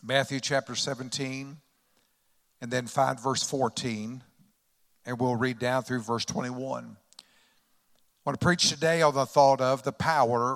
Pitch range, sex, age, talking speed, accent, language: 125-145 Hz, male, 60-79, 150 wpm, American, English